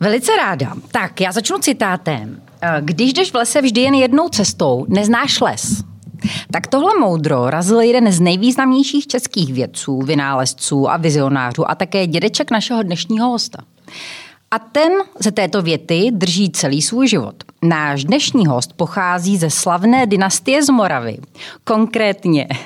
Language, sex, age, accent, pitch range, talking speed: Czech, female, 30-49, native, 150-215 Hz, 140 wpm